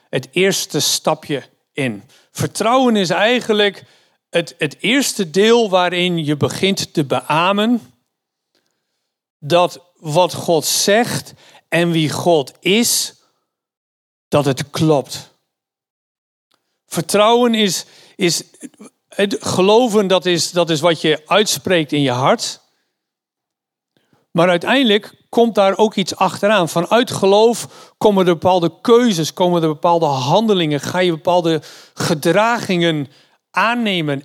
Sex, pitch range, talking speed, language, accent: male, 155-205 Hz, 110 wpm, Dutch, Dutch